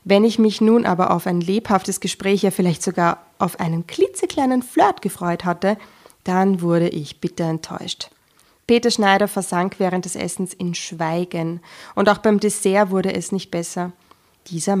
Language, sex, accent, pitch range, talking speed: German, female, German, 175-215 Hz, 160 wpm